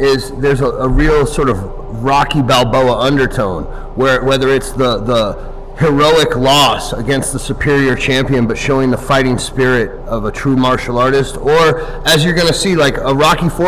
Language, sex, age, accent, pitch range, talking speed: English, male, 30-49, American, 135-160 Hz, 175 wpm